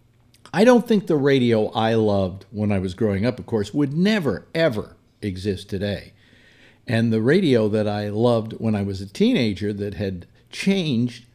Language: English